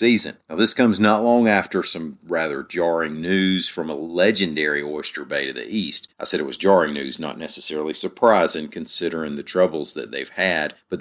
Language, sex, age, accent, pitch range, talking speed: English, male, 40-59, American, 80-105 Hz, 190 wpm